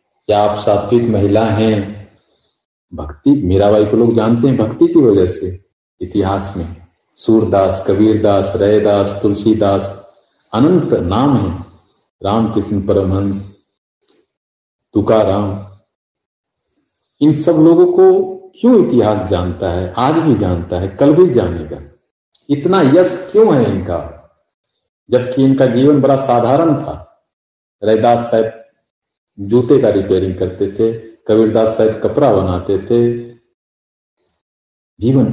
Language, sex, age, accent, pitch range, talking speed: Hindi, male, 50-69, native, 100-135 Hz, 110 wpm